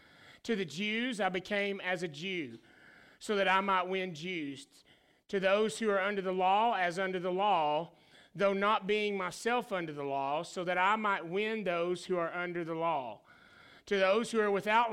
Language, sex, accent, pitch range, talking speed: English, male, American, 175-205 Hz, 195 wpm